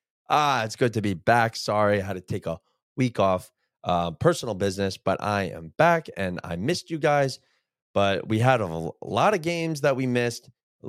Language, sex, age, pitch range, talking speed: English, male, 20-39, 105-150 Hz, 205 wpm